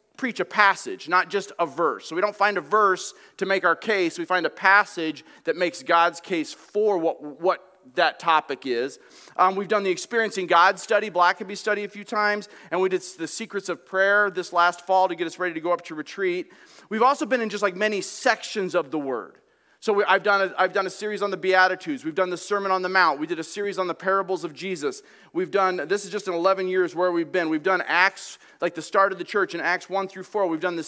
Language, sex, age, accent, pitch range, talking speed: English, male, 30-49, American, 175-210 Hz, 250 wpm